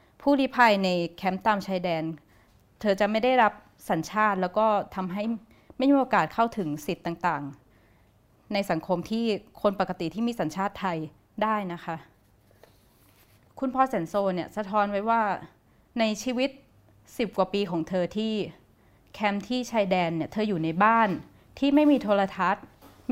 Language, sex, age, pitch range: Thai, female, 20-39, 175-230 Hz